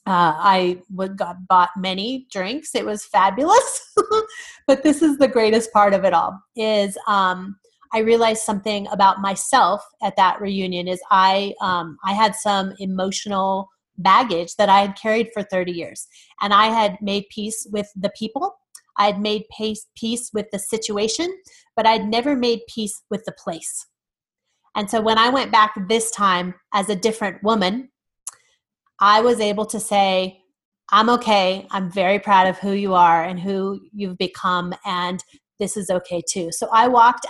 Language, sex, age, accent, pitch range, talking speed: English, female, 30-49, American, 190-225 Hz, 170 wpm